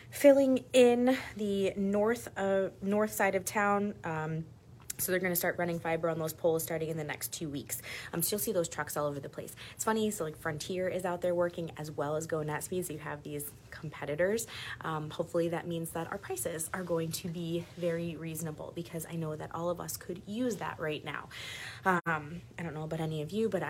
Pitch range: 150-180 Hz